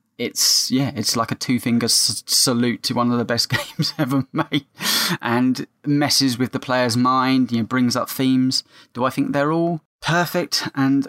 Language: English